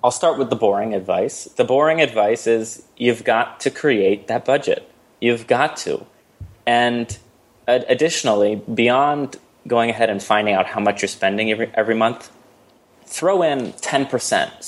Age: 20-39